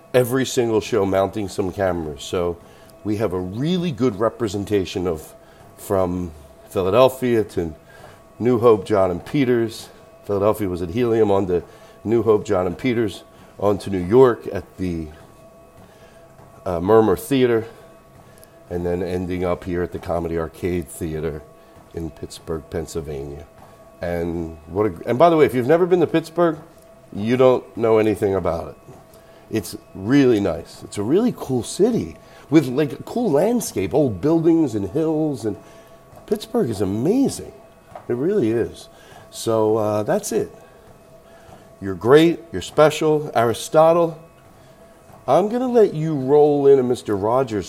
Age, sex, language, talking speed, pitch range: 40-59, male, English, 145 wpm, 95-150 Hz